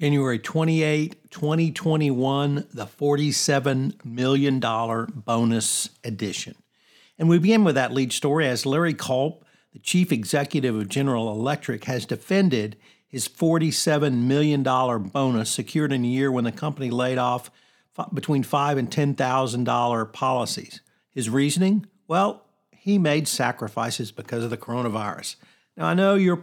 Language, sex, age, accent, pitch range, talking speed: English, male, 50-69, American, 120-150 Hz, 135 wpm